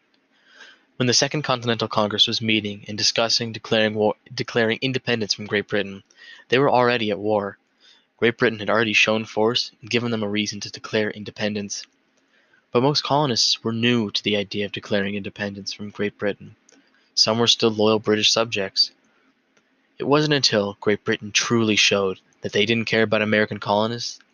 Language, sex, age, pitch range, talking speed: English, male, 20-39, 100-115 Hz, 170 wpm